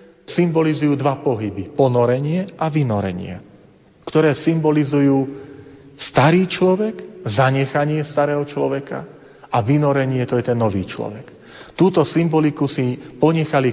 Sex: male